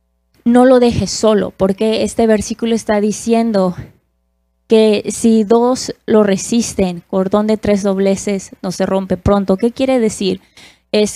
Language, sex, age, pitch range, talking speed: Spanish, female, 20-39, 200-235 Hz, 140 wpm